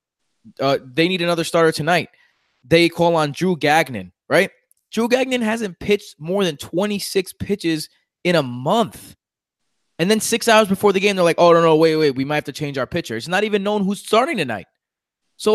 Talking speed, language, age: 200 wpm, English, 20-39